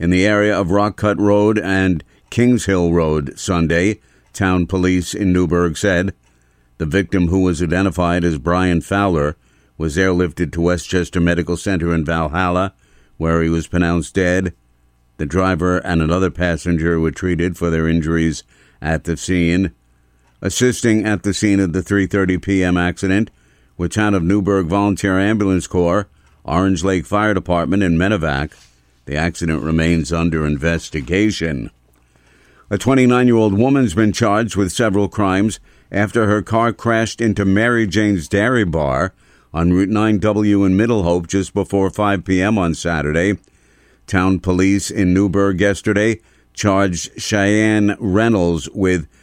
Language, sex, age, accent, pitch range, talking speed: English, male, 50-69, American, 85-100 Hz, 140 wpm